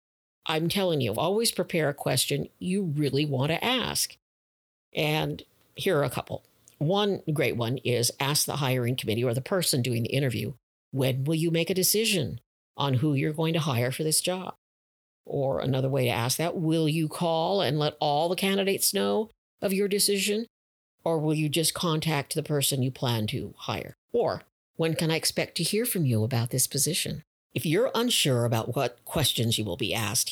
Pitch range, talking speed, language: 115-160 Hz, 190 wpm, English